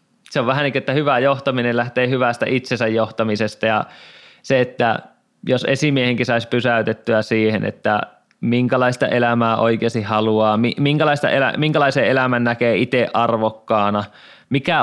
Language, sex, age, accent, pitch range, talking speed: Finnish, male, 20-39, native, 115-135 Hz, 125 wpm